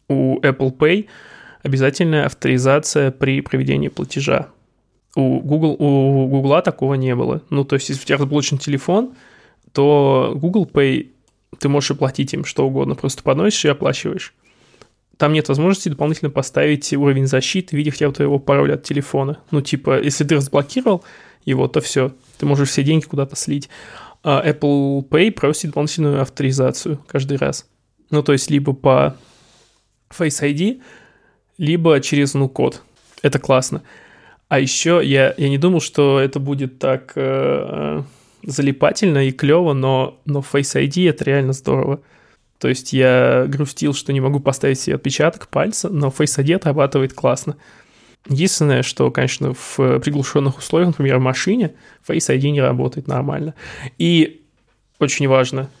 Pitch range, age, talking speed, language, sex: 135-150 Hz, 20-39, 150 wpm, Russian, male